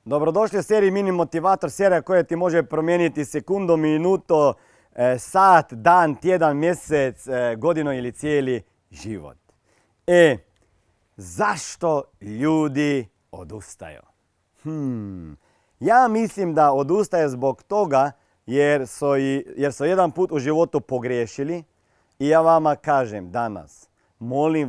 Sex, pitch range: male, 120-165 Hz